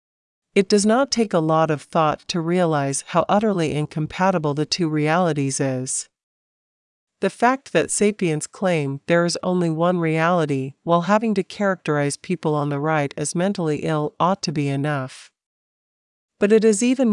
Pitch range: 150-190 Hz